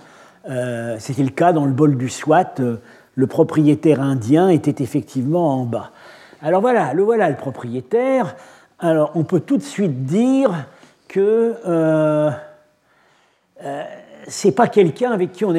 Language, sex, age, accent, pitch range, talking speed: French, male, 50-69, French, 135-175 Hz, 155 wpm